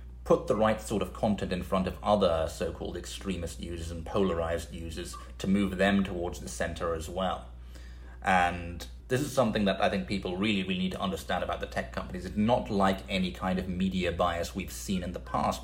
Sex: male